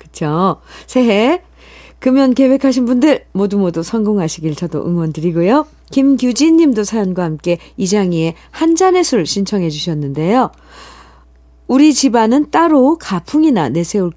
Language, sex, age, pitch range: Korean, female, 50-69, 165-260 Hz